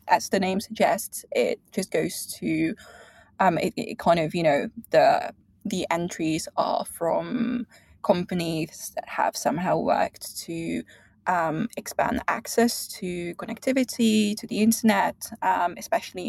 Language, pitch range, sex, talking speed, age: English, 185-240 Hz, female, 135 wpm, 20-39